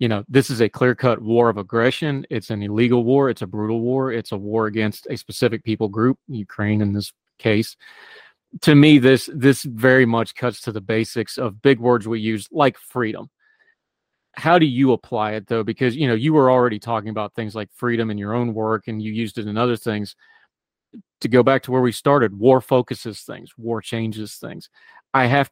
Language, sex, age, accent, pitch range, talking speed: English, male, 30-49, American, 110-130 Hz, 210 wpm